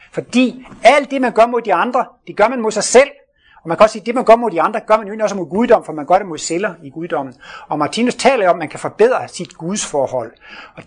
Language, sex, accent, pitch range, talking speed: Danish, male, native, 160-230 Hz, 285 wpm